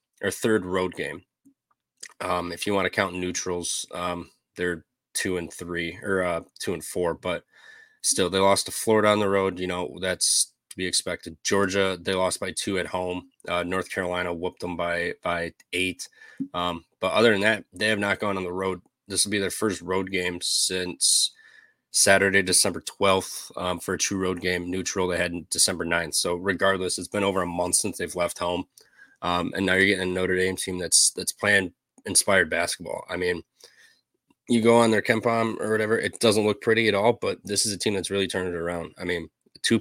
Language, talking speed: English, 210 wpm